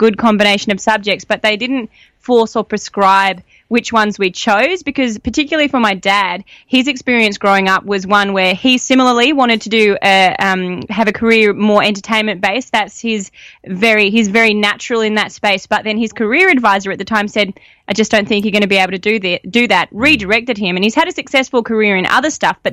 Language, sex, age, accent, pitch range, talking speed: English, female, 20-39, Australian, 200-245 Hz, 215 wpm